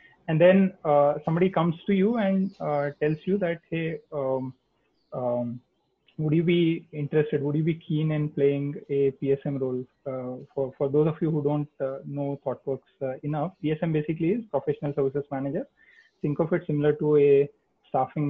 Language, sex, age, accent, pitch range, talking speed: English, male, 30-49, Indian, 135-165 Hz, 175 wpm